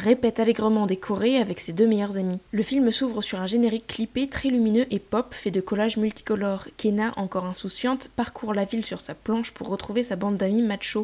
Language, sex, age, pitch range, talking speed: French, female, 10-29, 195-230 Hz, 205 wpm